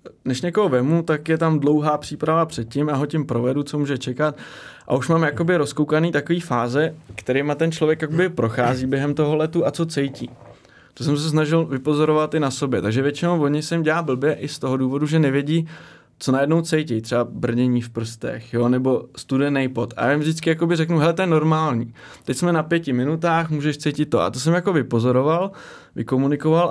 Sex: male